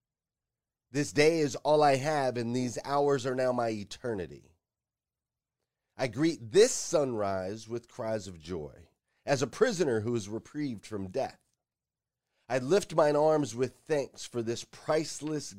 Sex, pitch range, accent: male, 125-165 Hz, American